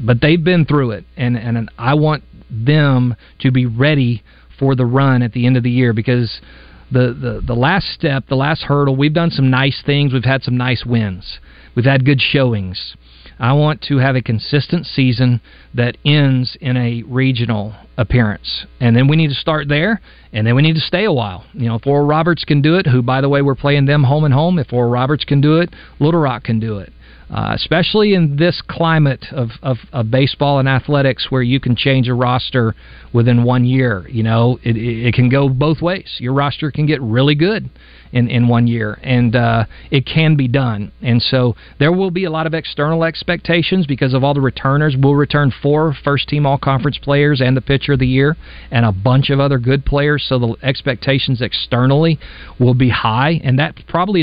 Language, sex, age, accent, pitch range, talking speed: English, male, 40-59, American, 120-145 Hz, 210 wpm